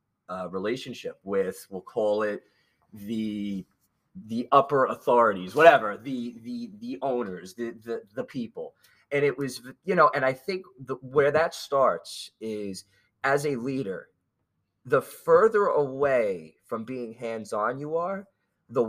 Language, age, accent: English, 30-49, American